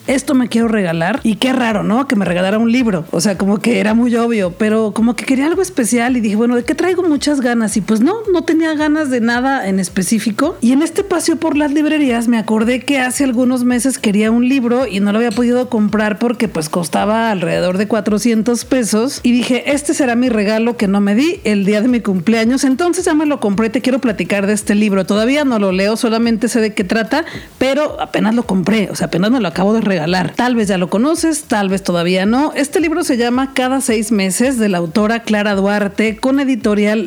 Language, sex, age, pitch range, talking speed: Spanish, female, 40-59, 215-270 Hz, 230 wpm